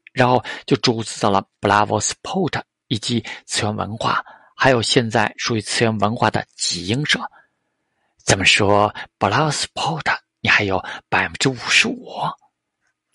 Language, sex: Chinese, male